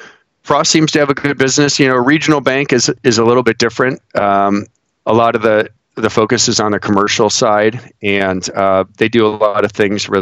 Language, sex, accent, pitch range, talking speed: English, male, American, 95-120 Hz, 230 wpm